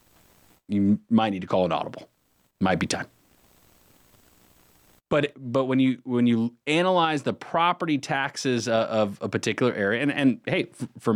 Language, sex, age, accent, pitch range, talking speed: English, male, 30-49, American, 95-135 Hz, 150 wpm